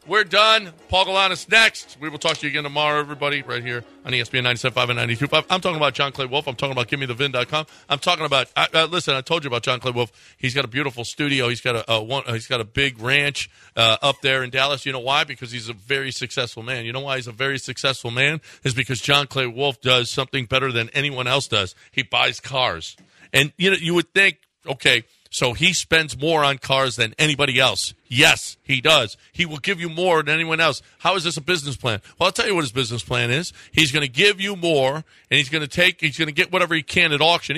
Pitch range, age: 130-165 Hz, 40-59